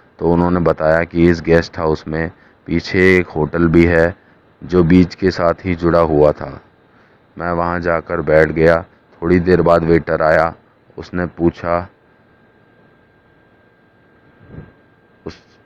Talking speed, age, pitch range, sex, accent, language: 130 wpm, 30-49, 80-85 Hz, male, native, Hindi